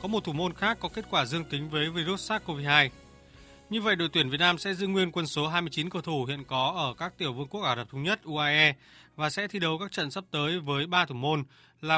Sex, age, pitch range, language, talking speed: male, 20-39, 150-190 Hz, Vietnamese, 260 wpm